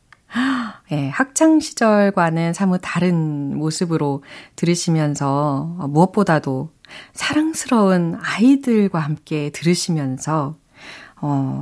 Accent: native